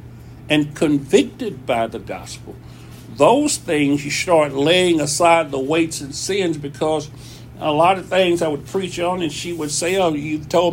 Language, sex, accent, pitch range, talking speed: English, male, American, 145-230 Hz, 175 wpm